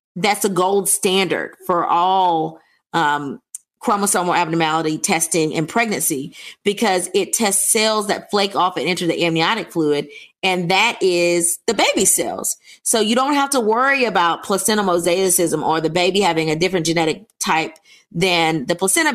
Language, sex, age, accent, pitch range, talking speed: English, female, 30-49, American, 170-220 Hz, 155 wpm